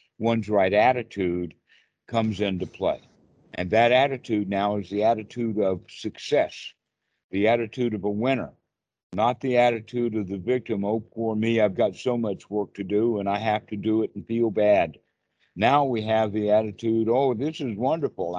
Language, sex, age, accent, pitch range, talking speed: English, male, 60-79, American, 105-125 Hz, 175 wpm